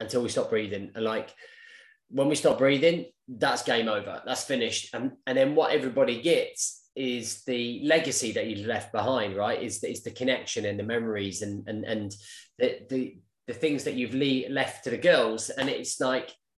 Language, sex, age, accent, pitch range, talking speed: English, male, 20-39, British, 120-155 Hz, 195 wpm